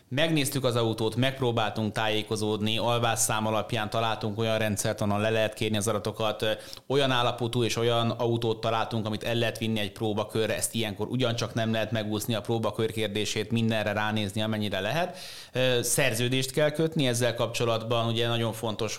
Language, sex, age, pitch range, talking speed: Hungarian, male, 30-49, 110-125 Hz, 155 wpm